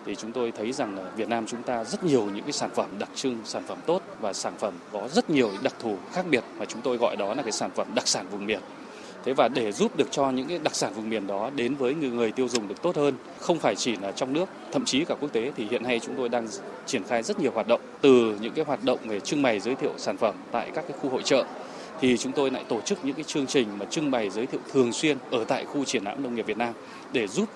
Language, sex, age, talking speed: Vietnamese, male, 20-39, 295 wpm